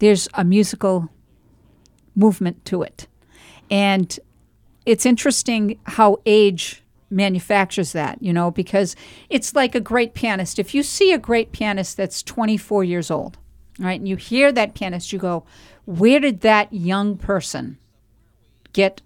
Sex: female